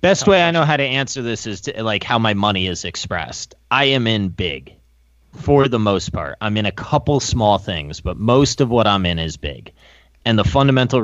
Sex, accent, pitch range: male, American, 90-115 Hz